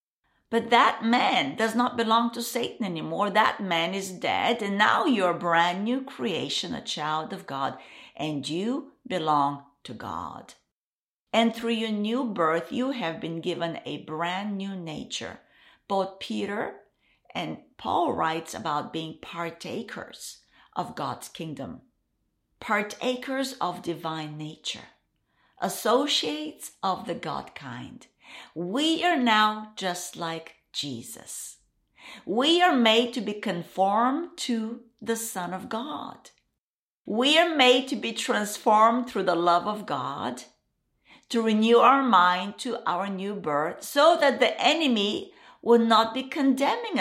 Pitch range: 180-250 Hz